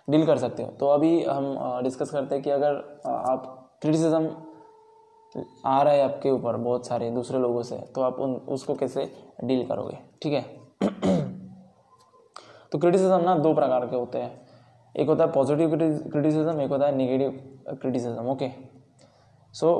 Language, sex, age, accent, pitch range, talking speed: Hindi, male, 10-29, native, 130-150 Hz, 160 wpm